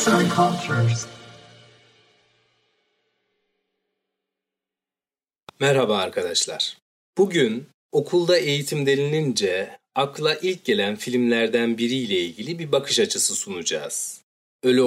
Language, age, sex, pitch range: Turkish, 40-59, male, 125-190 Hz